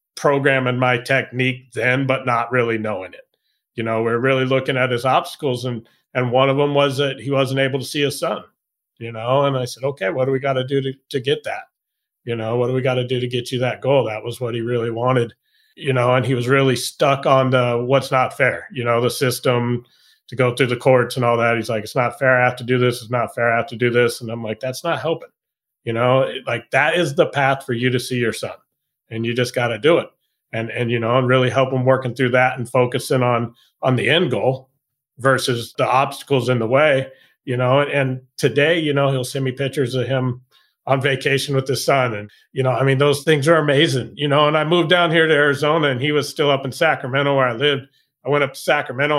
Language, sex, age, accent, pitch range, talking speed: English, male, 30-49, American, 125-140 Hz, 255 wpm